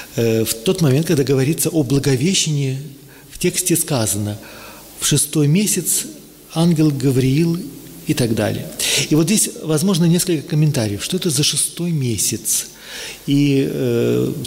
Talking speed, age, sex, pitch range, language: 130 wpm, 40-59, male, 130-160 Hz, Russian